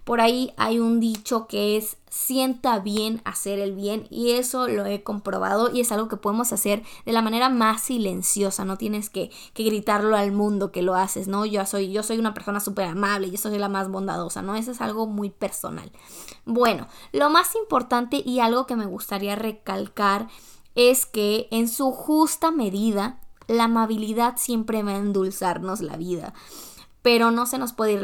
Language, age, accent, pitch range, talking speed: Spanish, 10-29, Mexican, 200-240 Hz, 185 wpm